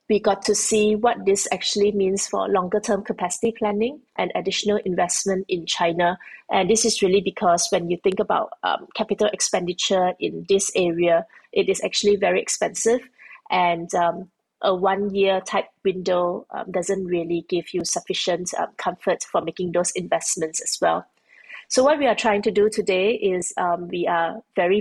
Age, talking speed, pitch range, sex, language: 30-49, 175 wpm, 180-210 Hz, female, English